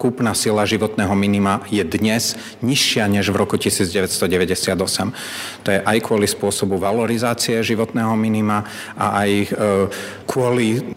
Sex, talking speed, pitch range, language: male, 120 wpm, 100-115 Hz, Slovak